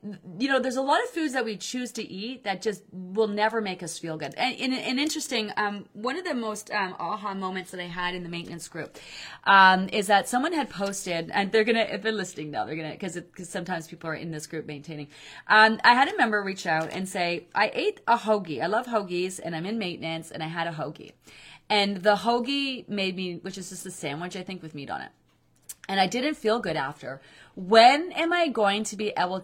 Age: 30-49